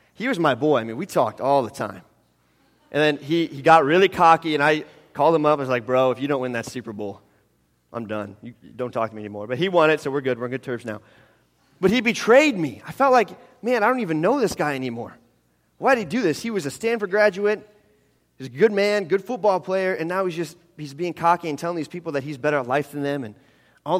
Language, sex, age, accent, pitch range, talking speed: English, male, 30-49, American, 125-165 Hz, 265 wpm